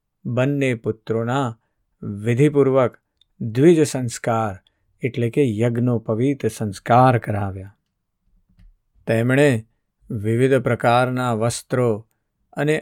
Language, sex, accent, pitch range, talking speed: Gujarati, male, native, 110-130 Hz, 45 wpm